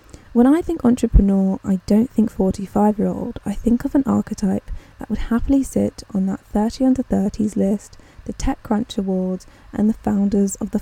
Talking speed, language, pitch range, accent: 185 wpm, English, 195-235 Hz, British